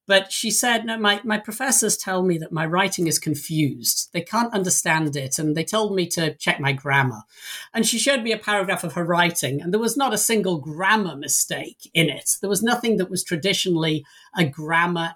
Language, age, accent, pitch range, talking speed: English, 50-69, British, 155-205 Hz, 210 wpm